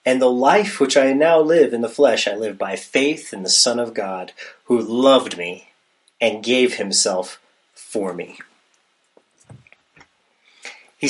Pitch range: 120-160 Hz